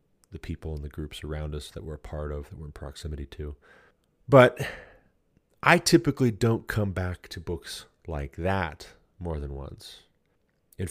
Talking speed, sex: 170 wpm, male